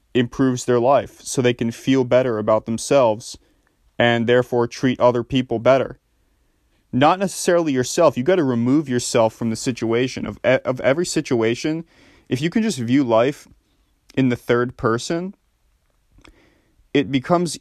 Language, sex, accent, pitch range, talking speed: English, male, American, 115-135 Hz, 150 wpm